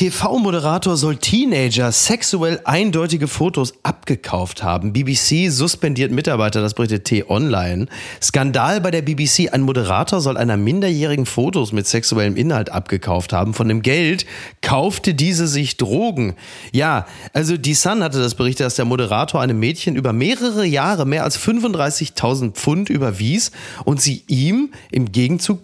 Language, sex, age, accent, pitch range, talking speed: German, male, 30-49, German, 115-155 Hz, 145 wpm